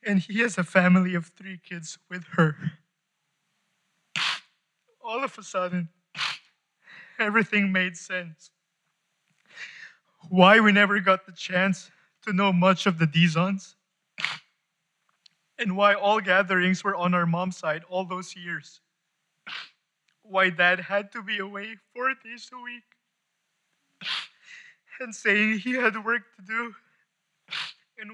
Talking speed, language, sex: 125 wpm, English, male